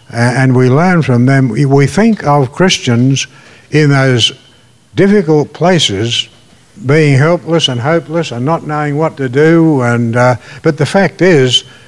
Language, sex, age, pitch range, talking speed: English, male, 60-79, 125-150 Hz, 145 wpm